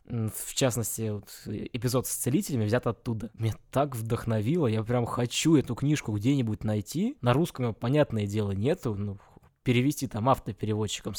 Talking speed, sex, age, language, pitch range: 140 wpm, male, 20-39, Russian, 105-130 Hz